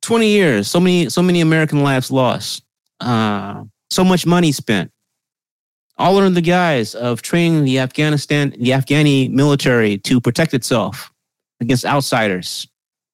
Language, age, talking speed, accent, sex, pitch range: English, 30-49, 135 wpm, American, male, 110-150 Hz